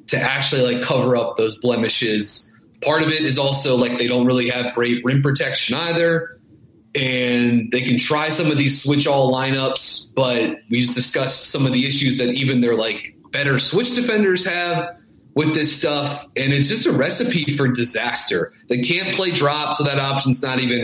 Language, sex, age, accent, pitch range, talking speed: English, male, 30-49, American, 115-140 Hz, 190 wpm